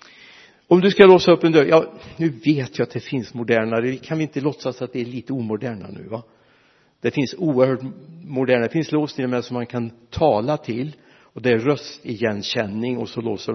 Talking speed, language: 205 wpm, Swedish